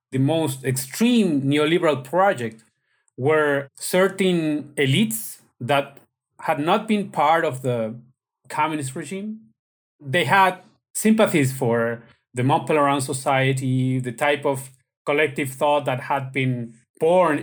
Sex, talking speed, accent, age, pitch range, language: male, 115 wpm, Mexican, 30-49, 130-165 Hz, English